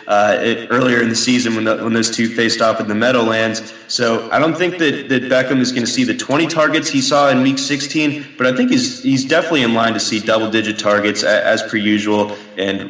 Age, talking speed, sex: 20-39, 240 wpm, male